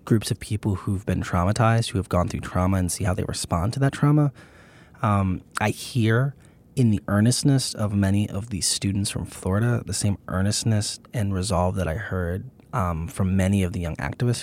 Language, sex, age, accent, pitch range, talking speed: English, male, 20-39, American, 95-120 Hz, 195 wpm